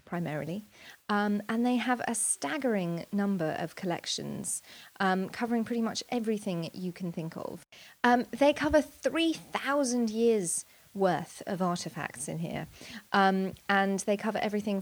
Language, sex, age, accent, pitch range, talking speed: English, female, 30-49, British, 170-210 Hz, 140 wpm